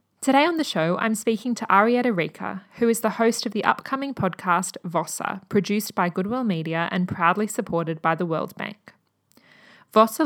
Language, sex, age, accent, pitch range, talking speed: English, female, 20-39, Australian, 180-225 Hz, 175 wpm